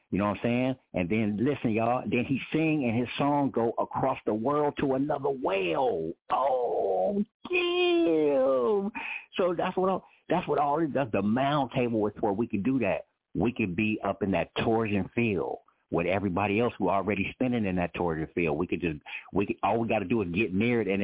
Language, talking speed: English, 215 wpm